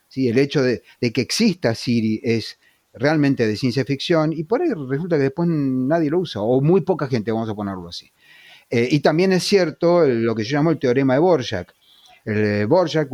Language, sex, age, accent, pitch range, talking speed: Spanish, male, 30-49, Argentinian, 115-160 Hz, 205 wpm